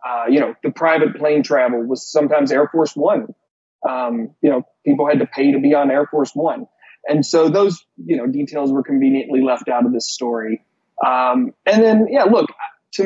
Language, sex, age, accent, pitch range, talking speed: English, male, 30-49, American, 130-165 Hz, 200 wpm